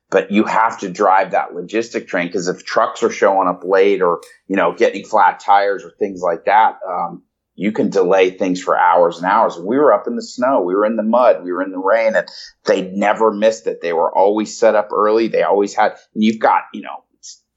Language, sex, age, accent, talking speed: English, male, 30-49, American, 240 wpm